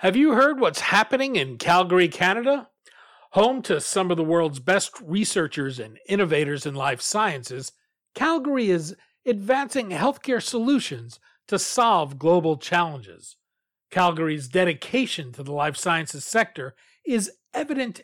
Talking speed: 130 wpm